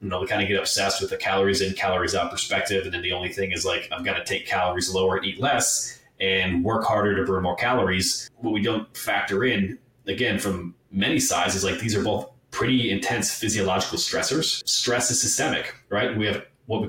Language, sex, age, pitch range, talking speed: English, male, 30-49, 95-105 Hz, 215 wpm